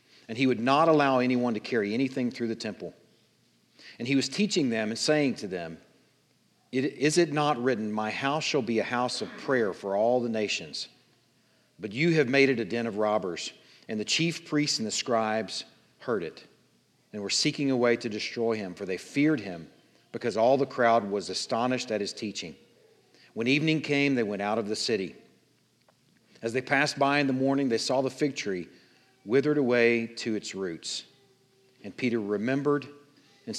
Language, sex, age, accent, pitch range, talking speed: English, male, 40-59, American, 110-145 Hz, 190 wpm